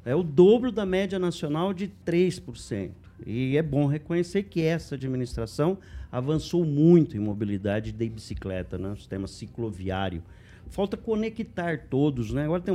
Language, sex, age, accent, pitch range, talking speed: Portuguese, male, 50-69, Brazilian, 100-140 Hz, 145 wpm